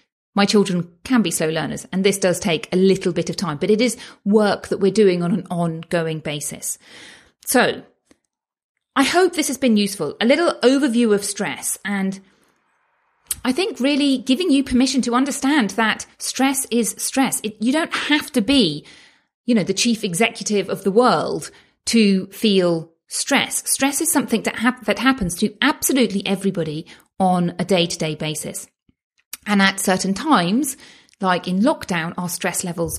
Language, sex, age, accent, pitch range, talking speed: English, female, 40-59, British, 180-245 Hz, 165 wpm